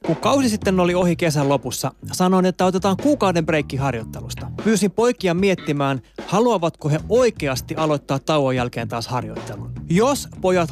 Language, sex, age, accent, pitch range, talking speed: Finnish, male, 20-39, native, 135-185 Hz, 145 wpm